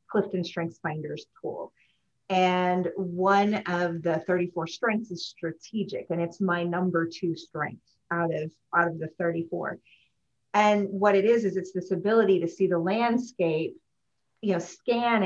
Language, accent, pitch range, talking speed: English, American, 175-220 Hz, 155 wpm